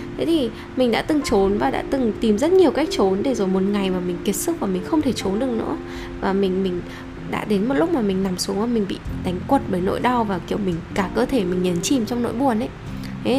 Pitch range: 195-275 Hz